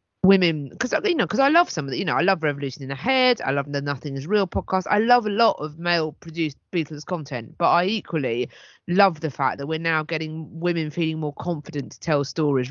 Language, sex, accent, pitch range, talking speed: English, female, British, 135-190 Hz, 240 wpm